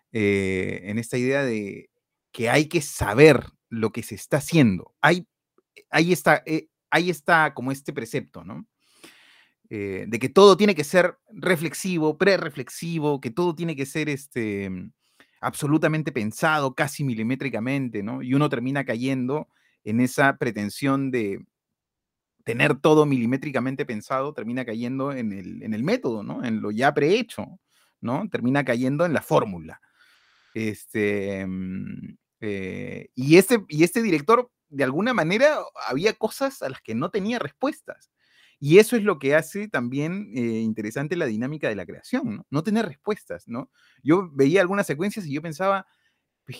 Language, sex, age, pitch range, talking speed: Spanish, male, 30-49, 125-190 Hz, 155 wpm